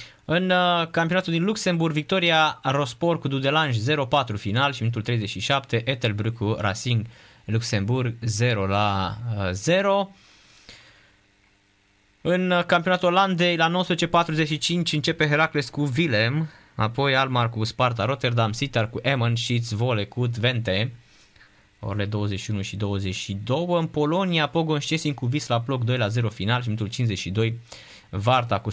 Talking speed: 115 wpm